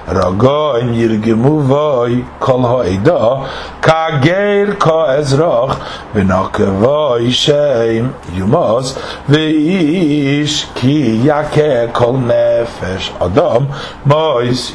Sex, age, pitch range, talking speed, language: male, 60-79, 120-150 Hz, 75 wpm, English